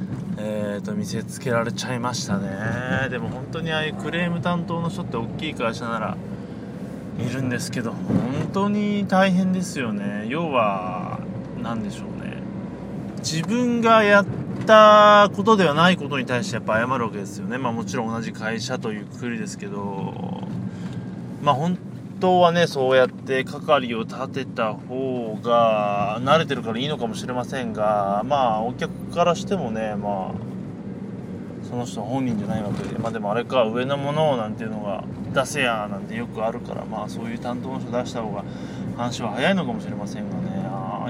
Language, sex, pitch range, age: Japanese, male, 120-185 Hz, 20-39